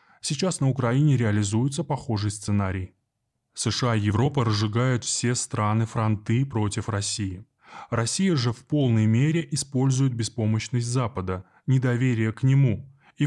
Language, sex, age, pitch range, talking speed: Russian, male, 20-39, 110-135 Hz, 120 wpm